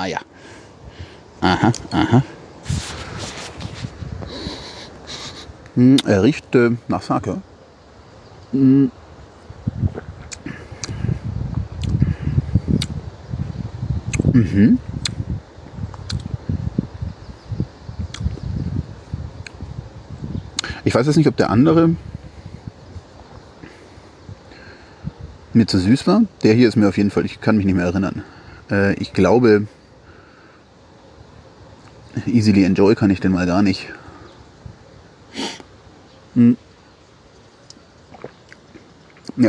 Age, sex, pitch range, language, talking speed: 50-69, male, 95-120 Hz, German, 65 wpm